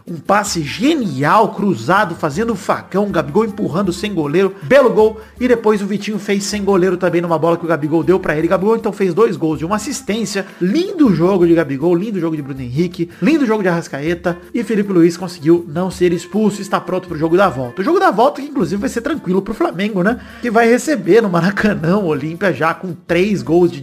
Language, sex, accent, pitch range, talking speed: Portuguese, male, Brazilian, 170-230 Hz, 215 wpm